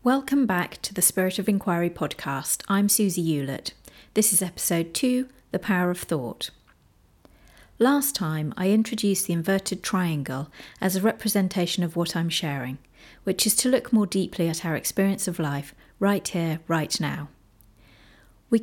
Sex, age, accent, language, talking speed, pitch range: female, 30-49, British, English, 160 wpm, 165-210 Hz